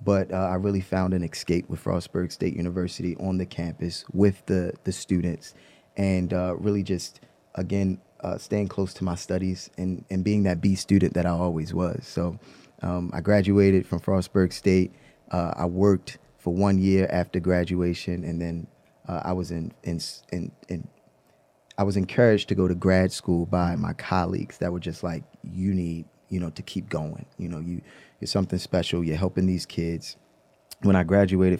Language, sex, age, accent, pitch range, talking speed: English, male, 20-39, American, 85-95 Hz, 185 wpm